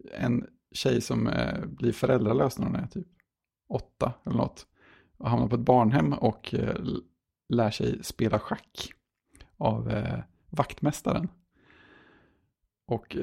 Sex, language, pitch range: male, Swedish, 115-150 Hz